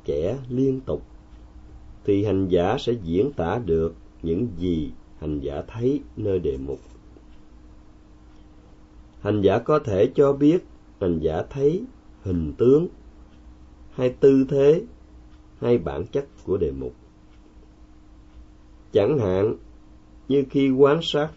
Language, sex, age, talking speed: Vietnamese, male, 30-49, 125 wpm